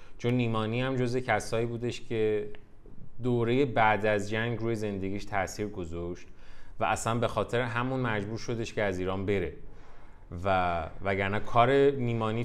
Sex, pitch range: male, 100-130 Hz